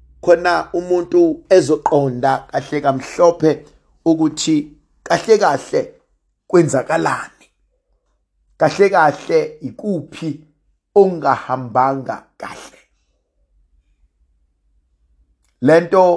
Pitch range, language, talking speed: 125-175 Hz, English, 65 wpm